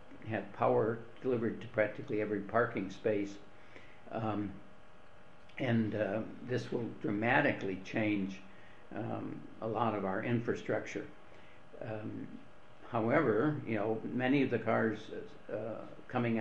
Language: English